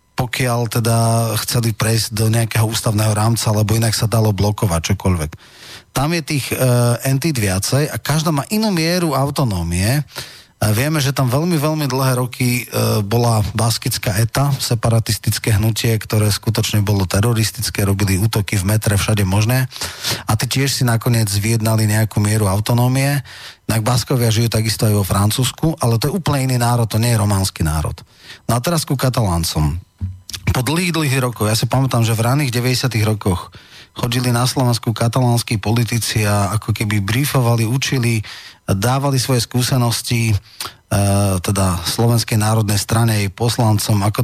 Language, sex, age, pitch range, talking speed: Slovak, male, 30-49, 110-130 Hz, 155 wpm